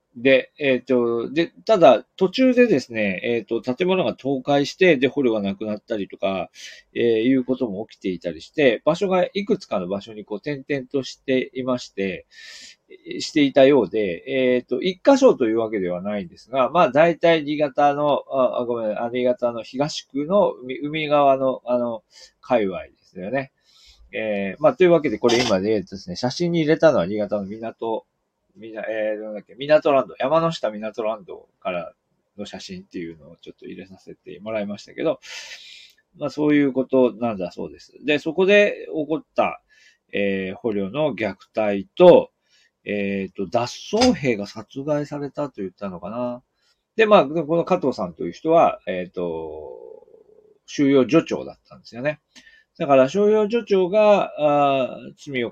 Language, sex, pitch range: Japanese, male, 110-165 Hz